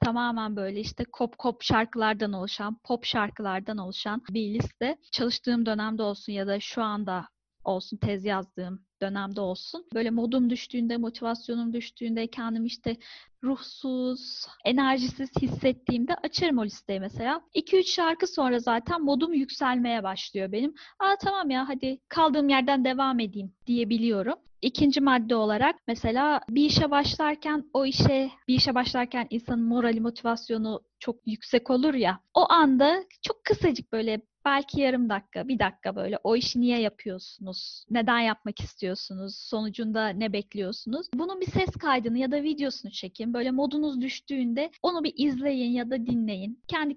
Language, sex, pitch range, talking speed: Turkish, female, 215-275 Hz, 145 wpm